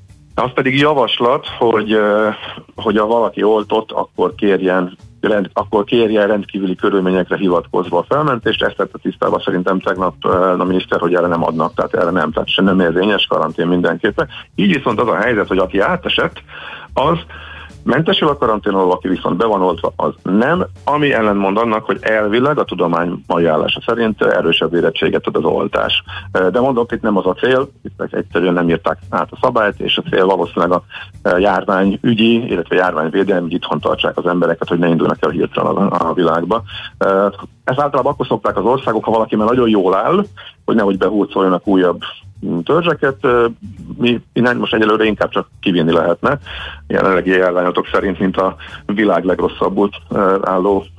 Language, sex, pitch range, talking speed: Hungarian, male, 90-110 Hz, 160 wpm